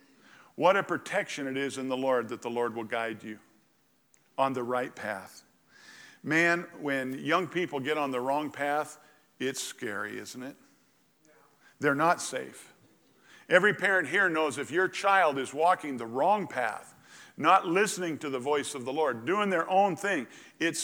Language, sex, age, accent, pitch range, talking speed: English, male, 50-69, American, 145-220 Hz, 170 wpm